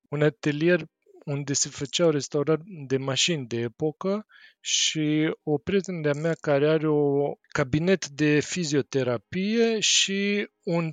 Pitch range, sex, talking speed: 135-175 Hz, male, 125 wpm